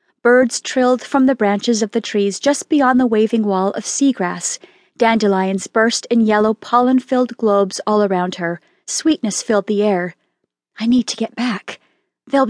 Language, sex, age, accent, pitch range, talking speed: English, female, 30-49, American, 205-255 Hz, 165 wpm